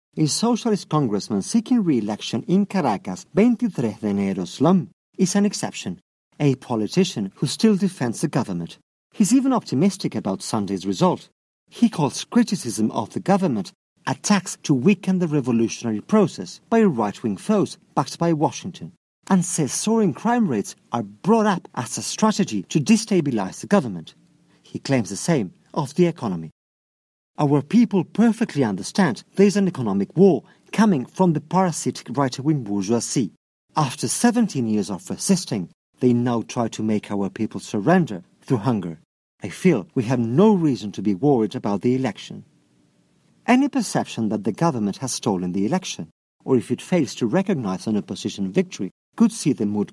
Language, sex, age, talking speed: English, male, 50-69, 160 wpm